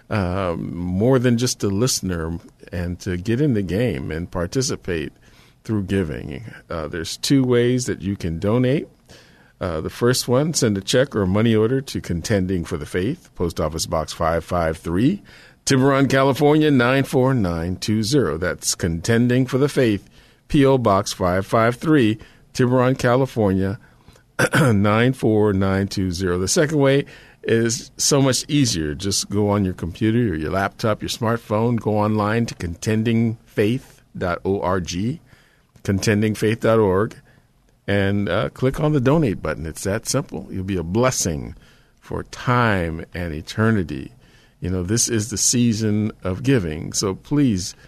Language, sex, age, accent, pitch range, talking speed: English, male, 50-69, American, 95-125 Hz, 150 wpm